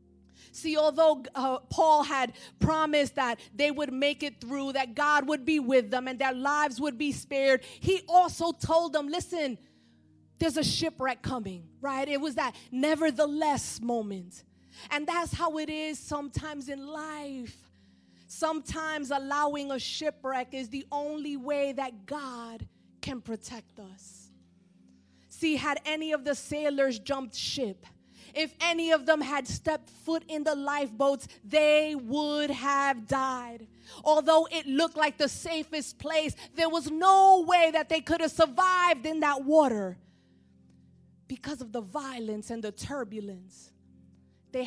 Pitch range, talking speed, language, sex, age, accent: 235-305 Hz, 145 wpm, English, female, 20-39, American